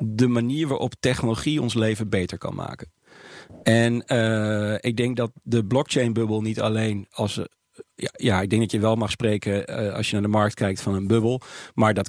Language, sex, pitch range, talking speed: Dutch, male, 105-135 Hz, 205 wpm